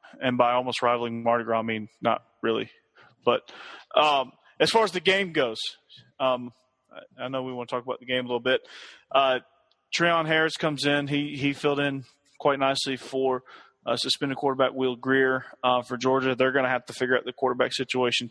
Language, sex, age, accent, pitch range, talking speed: English, male, 30-49, American, 120-135 Hz, 200 wpm